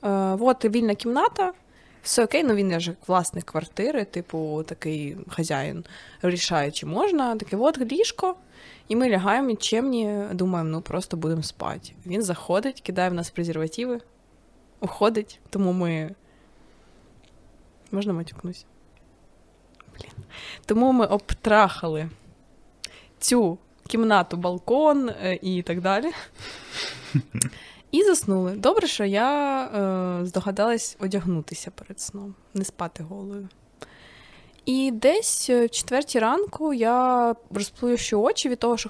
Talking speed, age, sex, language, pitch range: 115 wpm, 20-39, female, Ukrainian, 170-235 Hz